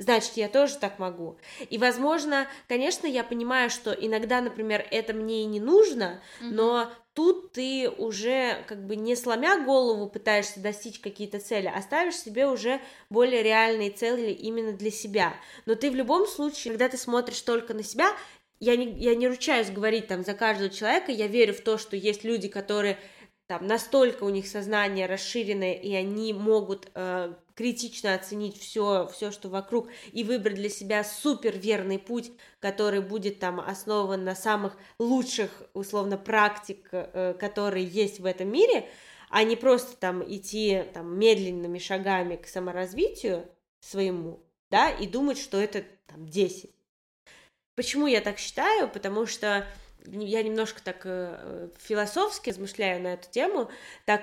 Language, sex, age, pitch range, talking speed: Russian, female, 20-39, 195-235 Hz, 155 wpm